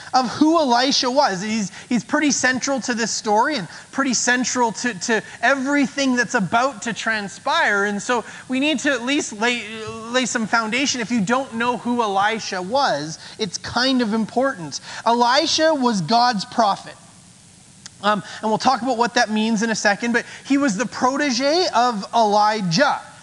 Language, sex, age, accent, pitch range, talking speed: English, male, 30-49, American, 210-255 Hz, 170 wpm